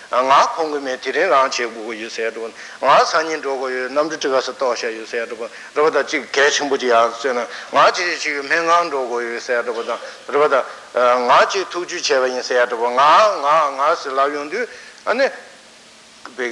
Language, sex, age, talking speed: Italian, male, 60-79, 100 wpm